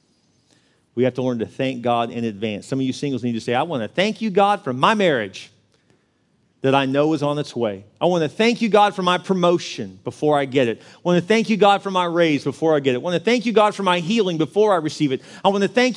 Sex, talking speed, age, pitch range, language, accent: male, 280 wpm, 40-59, 125-200 Hz, English, American